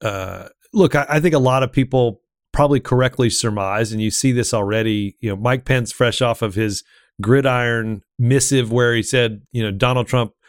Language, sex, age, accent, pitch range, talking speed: English, male, 40-59, American, 115-135 Hz, 195 wpm